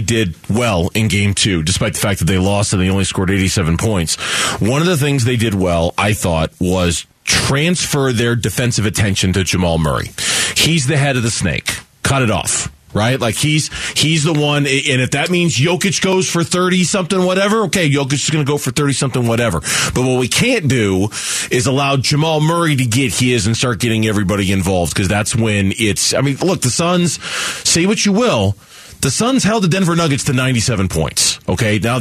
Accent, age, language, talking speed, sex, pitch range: American, 30-49, English, 200 wpm, male, 105-155 Hz